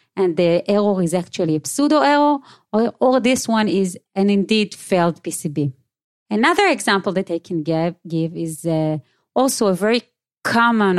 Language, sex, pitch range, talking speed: English, female, 175-225 Hz, 165 wpm